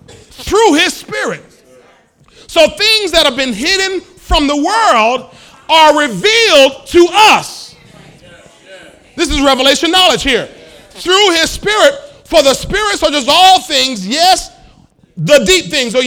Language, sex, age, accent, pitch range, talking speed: English, male, 40-59, American, 190-320 Hz, 135 wpm